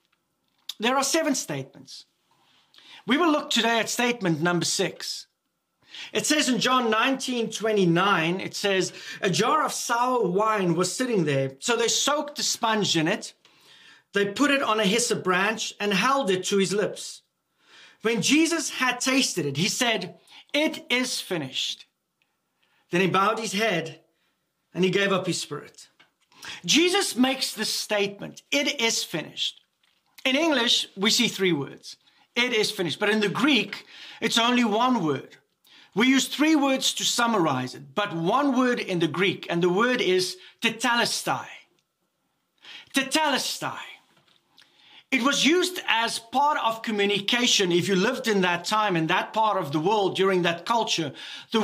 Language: English